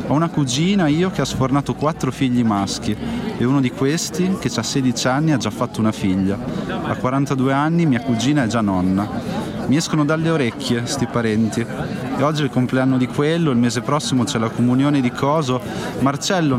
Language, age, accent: Italian, 30-49, native